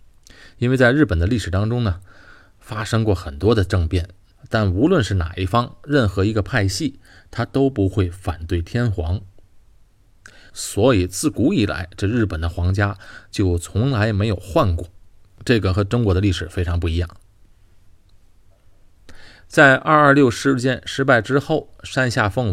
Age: 30-49